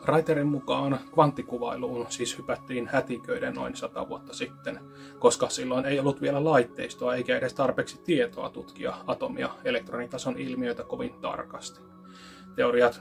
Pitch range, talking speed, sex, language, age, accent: 125-140 Hz, 125 wpm, male, Finnish, 30-49, native